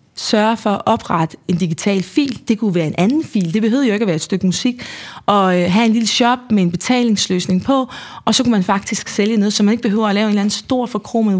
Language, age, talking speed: Danish, 20-39, 265 wpm